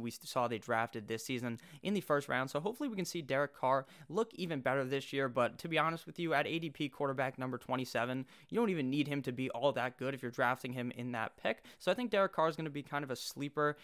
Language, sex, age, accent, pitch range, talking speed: English, male, 20-39, American, 120-145 Hz, 275 wpm